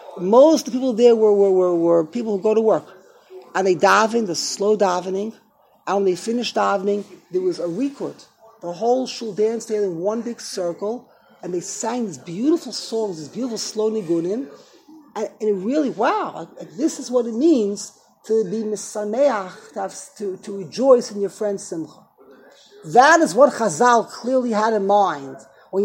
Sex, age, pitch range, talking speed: male, 40-59, 195-255 Hz, 180 wpm